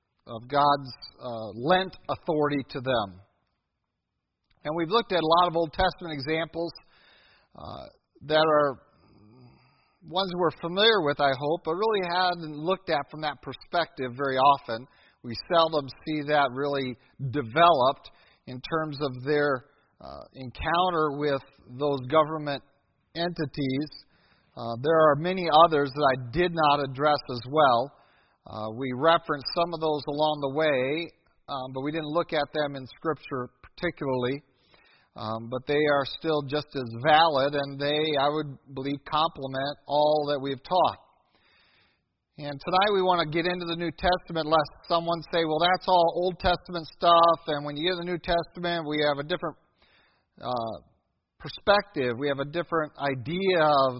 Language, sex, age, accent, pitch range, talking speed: English, male, 50-69, American, 135-170 Hz, 155 wpm